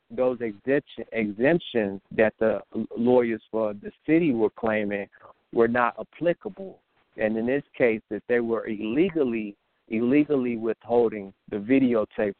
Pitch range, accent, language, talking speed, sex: 105-115 Hz, American, English, 120 wpm, male